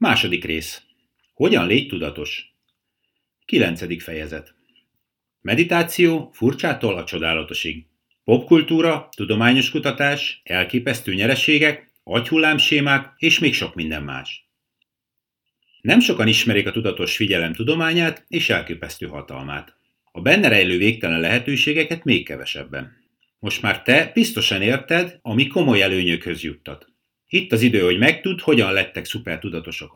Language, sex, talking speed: Hungarian, male, 110 wpm